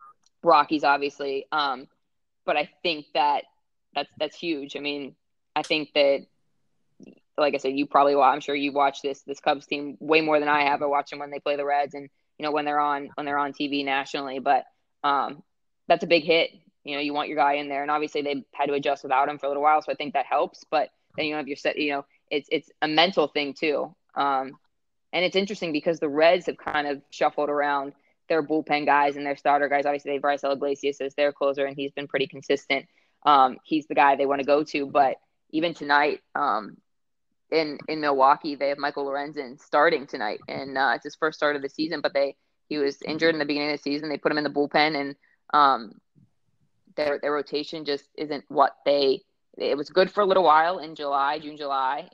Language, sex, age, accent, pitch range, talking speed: English, female, 20-39, American, 140-150 Hz, 230 wpm